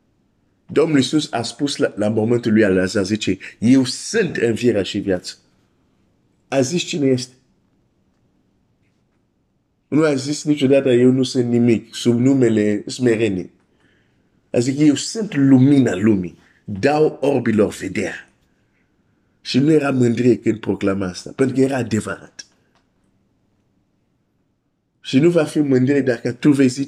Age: 50-69